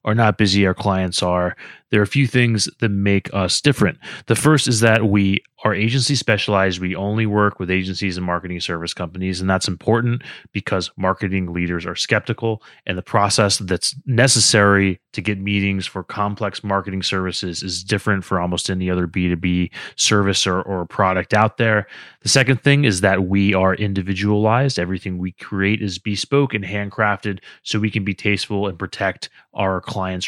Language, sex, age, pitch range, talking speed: English, male, 30-49, 95-110 Hz, 175 wpm